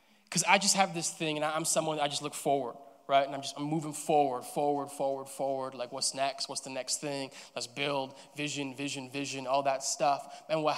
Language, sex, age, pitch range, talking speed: English, male, 20-39, 135-155 Hz, 225 wpm